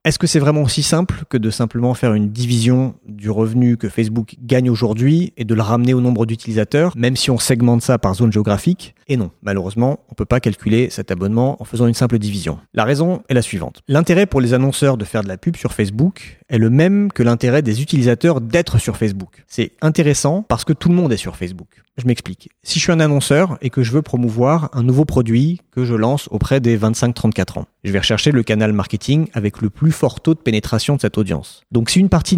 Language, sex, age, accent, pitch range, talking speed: French, male, 30-49, French, 110-150 Hz, 230 wpm